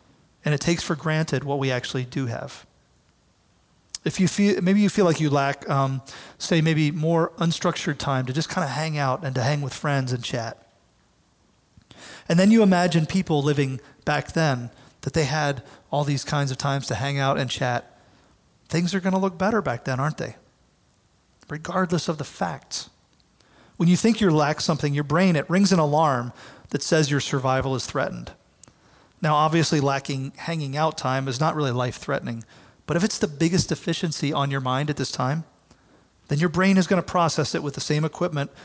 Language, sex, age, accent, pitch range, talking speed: English, male, 30-49, American, 135-165 Hz, 190 wpm